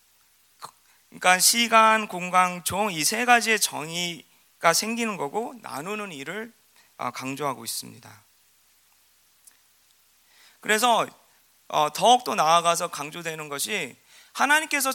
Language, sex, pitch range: Korean, male, 155-225 Hz